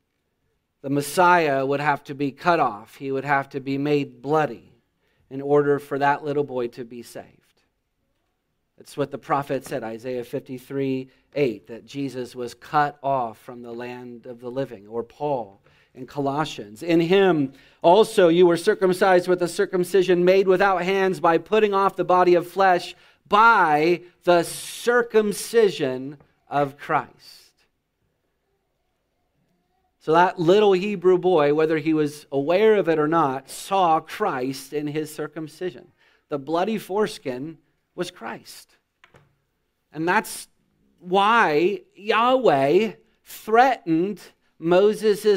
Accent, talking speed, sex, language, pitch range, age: American, 130 wpm, male, English, 140-190 Hz, 40-59